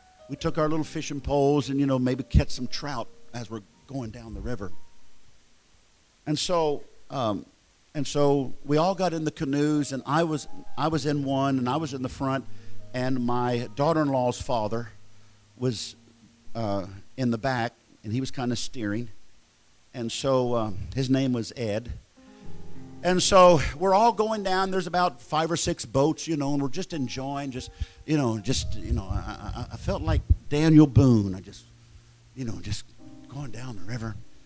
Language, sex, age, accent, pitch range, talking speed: English, male, 50-69, American, 110-155 Hz, 180 wpm